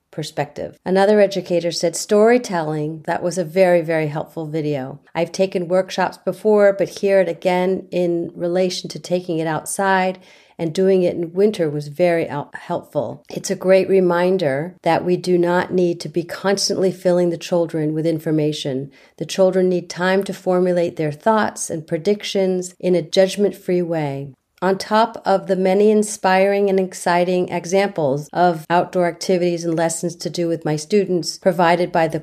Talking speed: 160 wpm